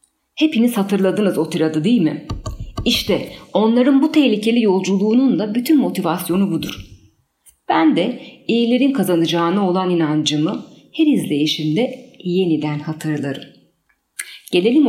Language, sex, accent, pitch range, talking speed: Turkish, female, native, 155-230 Hz, 105 wpm